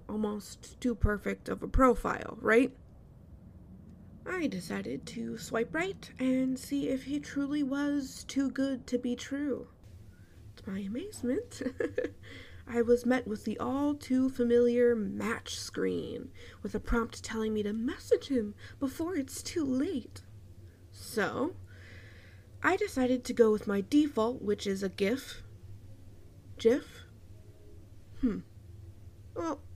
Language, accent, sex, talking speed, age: English, American, female, 125 wpm, 20-39